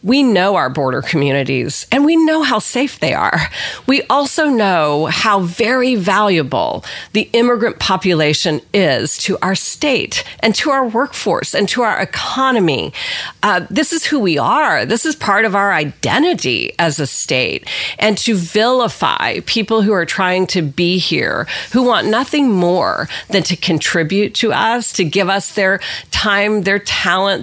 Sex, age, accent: female, 40-59, American